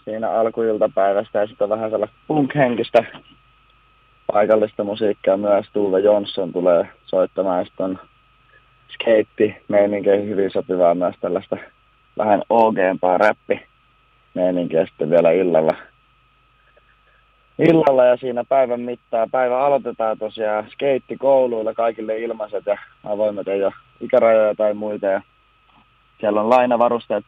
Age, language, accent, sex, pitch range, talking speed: 30-49, Finnish, native, male, 105-115 Hz, 110 wpm